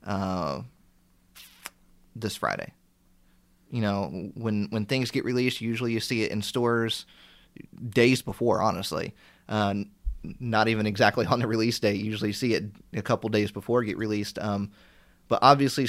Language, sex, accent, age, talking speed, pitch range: English, male, American, 30-49, 150 wpm, 100-125 Hz